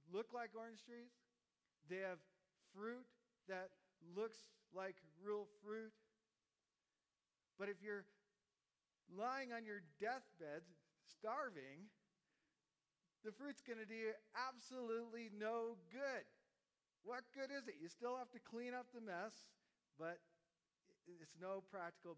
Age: 50-69